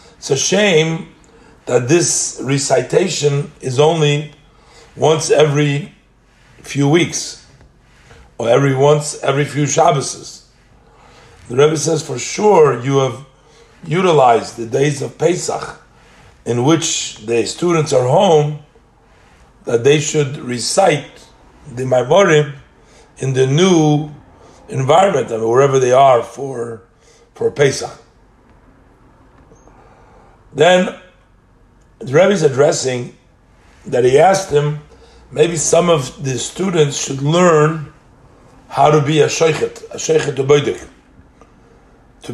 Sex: male